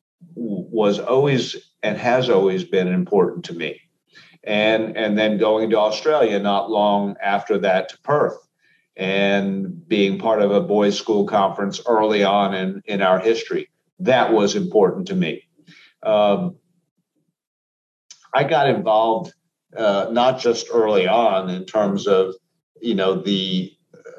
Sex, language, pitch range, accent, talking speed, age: male, English, 100-130 Hz, American, 140 wpm, 50-69